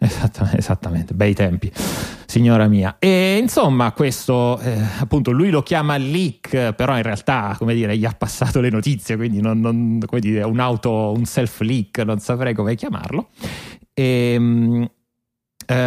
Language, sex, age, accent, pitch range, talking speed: Italian, male, 30-49, native, 105-120 Hz, 155 wpm